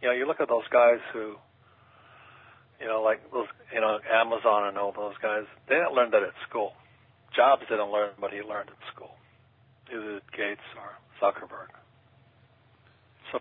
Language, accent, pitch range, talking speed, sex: English, American, 110-130 Hz, 170 wpm, male